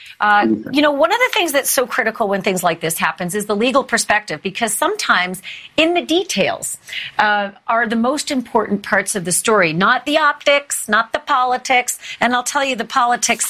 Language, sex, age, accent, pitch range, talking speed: English, female, 40-59, American, 205-250 Hz, 200 wpm